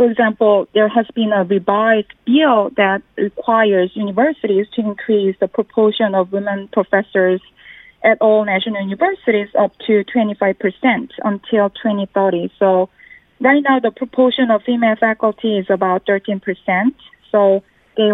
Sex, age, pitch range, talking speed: female, 30-49, 195-235 Hz, 130 wpm